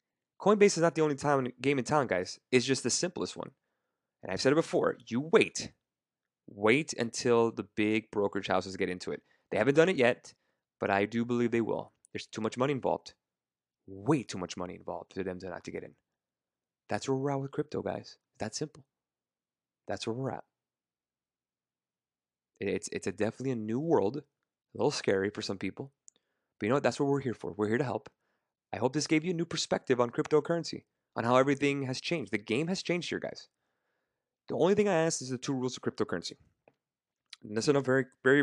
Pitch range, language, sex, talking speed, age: 105-145 Hz, English, male, 210 wpm, 20-39